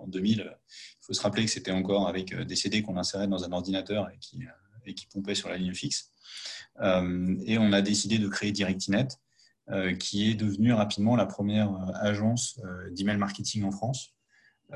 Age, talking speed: 30-49, 180 wpm